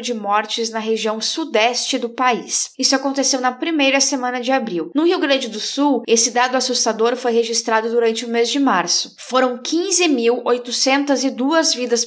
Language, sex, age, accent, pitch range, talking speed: Portuguese, female, 10-29, Brazilian, 235-290 Hz, 160 wpm